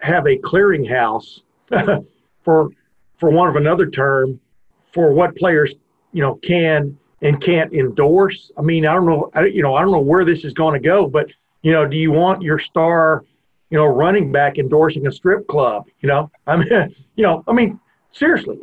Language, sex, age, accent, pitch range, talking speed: English, male, 50-69, American, 150-190 Hz, 195 wpm